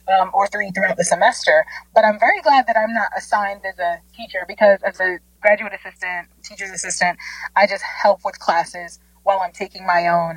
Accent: American